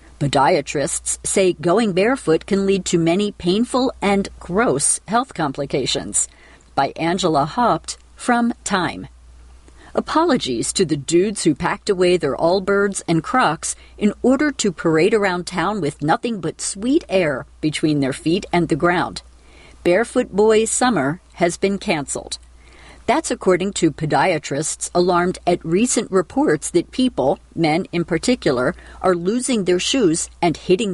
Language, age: English, 50-69